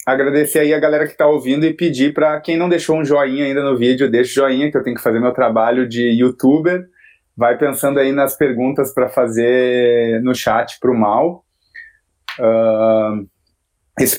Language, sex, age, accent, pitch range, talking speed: Portuguese, male, 20-39, Brazilian, 120-150 Hz, 180 wpm